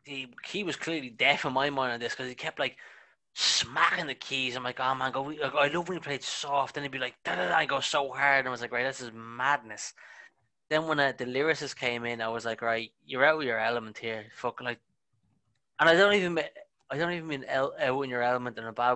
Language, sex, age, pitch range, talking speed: English, male, 20-39, 120-140 Hz, 255 wpm